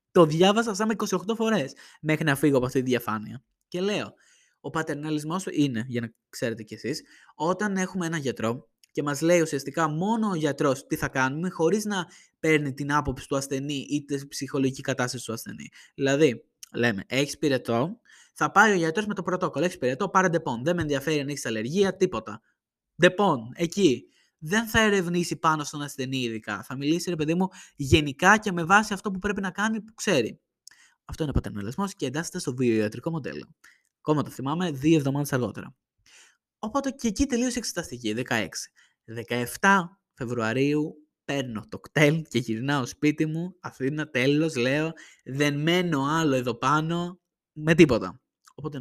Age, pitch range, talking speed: 20-39, 130-180 Hz, 170 wpm